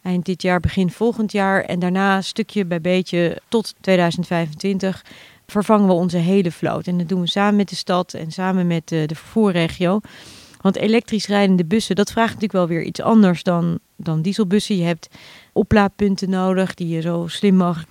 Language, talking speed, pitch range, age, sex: Dutch, 185 wpm, 175-200 Hz, 40-59, female